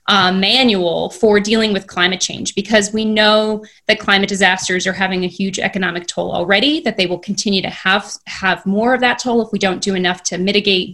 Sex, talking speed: female, 210 wpm